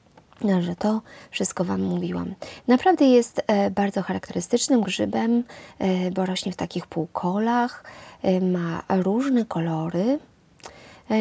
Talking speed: 125 wpm